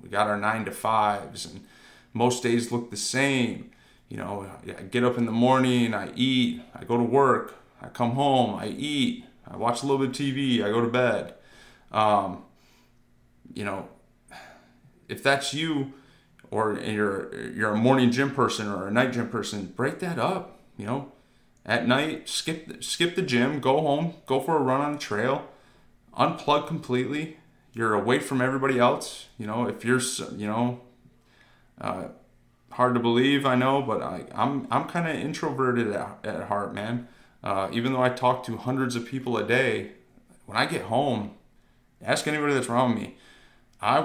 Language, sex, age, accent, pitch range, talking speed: English, male, 30-49, American, 115-135 Hz, 180 wpm